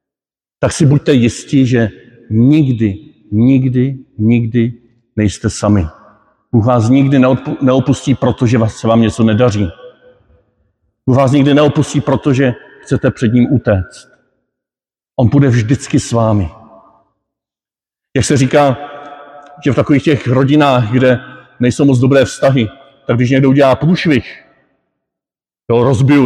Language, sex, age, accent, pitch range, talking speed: Czech, male, 50-69, native, 120-145 Hz, 120 wpm